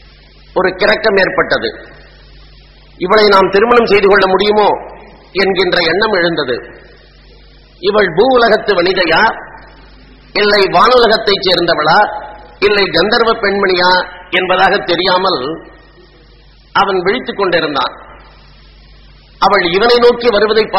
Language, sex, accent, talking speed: English, male, Indian, 85 wpm